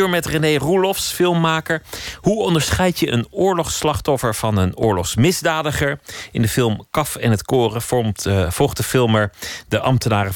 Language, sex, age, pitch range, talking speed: Dutch, male, 40-59, 95-135 Hz, 150 wpm